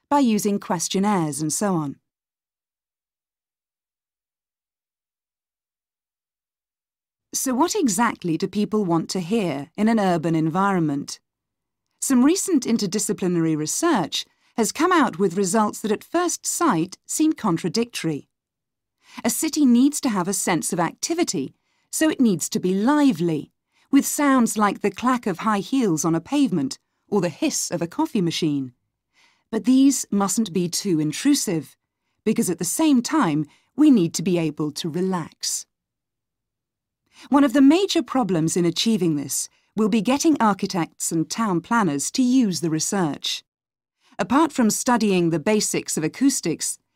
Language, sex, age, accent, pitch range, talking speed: English, female, 40-59, British, 170-260 Hz, 140 wpm